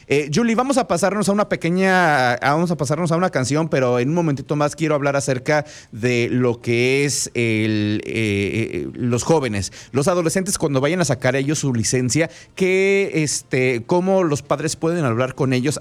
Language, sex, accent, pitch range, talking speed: English, male, Mexican, 120-165 Hz, 185 wpm